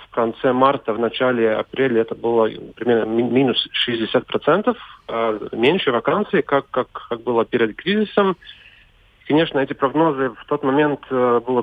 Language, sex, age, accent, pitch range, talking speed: Russian, male, 40-59, native, 115-140 Hz, 135 wpm